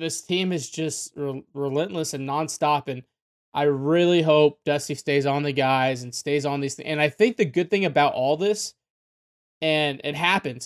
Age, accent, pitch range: 20-39, American, 145-190 Hz